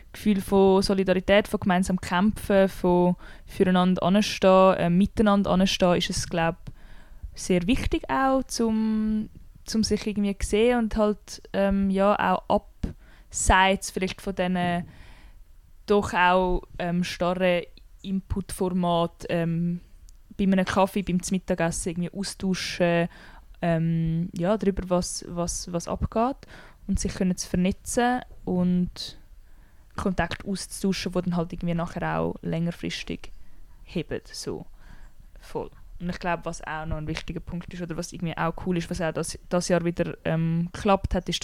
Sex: female